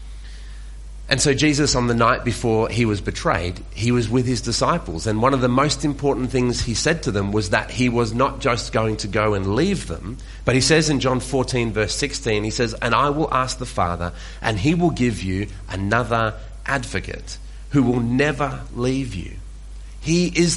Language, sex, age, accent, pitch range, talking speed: English, male, 30-49, Australian, 100-140 Hz, 200 wpm